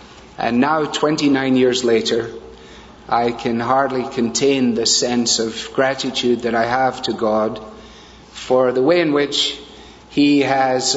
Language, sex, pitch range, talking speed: English, male, 120-140 Hz, 135 wpm